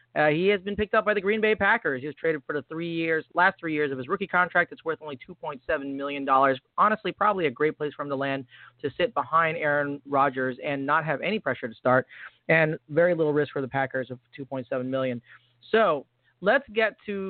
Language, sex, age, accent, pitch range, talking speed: English, male, 30-49, American, 145-195 Hz, 225 wpm